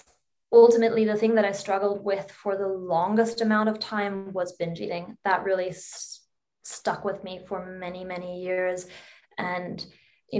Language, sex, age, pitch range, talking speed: English, female, 20-39, 185-215 Hz, 155 wpm